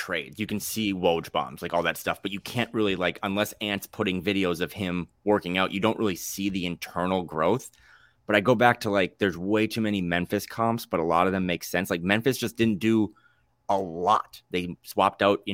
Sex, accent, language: male, American, English